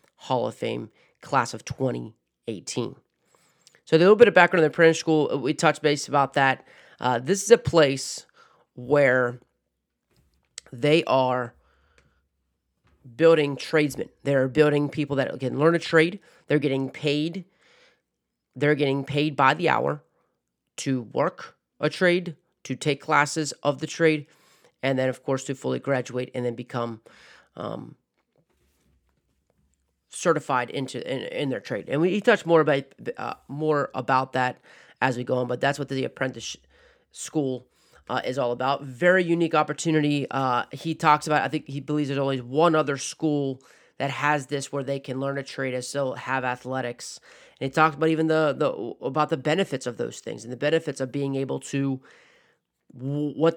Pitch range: 130-155 Hz